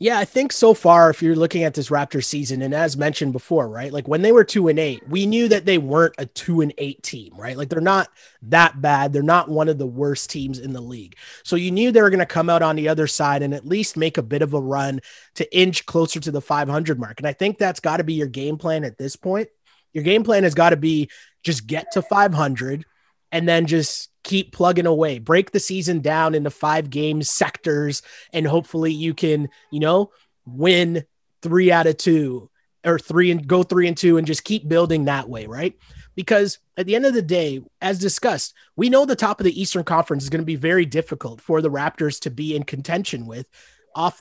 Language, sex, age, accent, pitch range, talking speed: English, male, 30-49, American, 145-180 Hz, 235 wpm